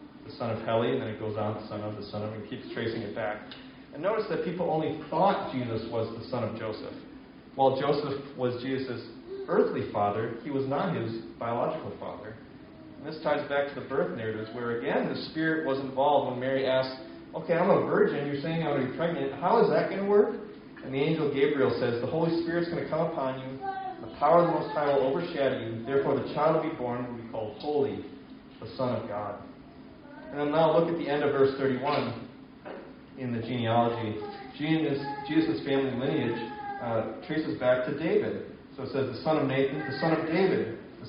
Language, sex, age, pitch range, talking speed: English, male, 30-49, 125-160 Hz, 220 wpm